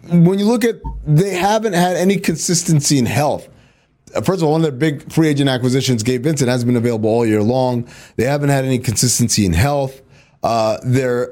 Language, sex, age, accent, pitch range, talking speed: English, male, 30-49, American, 140-200 Hz, 200 wpm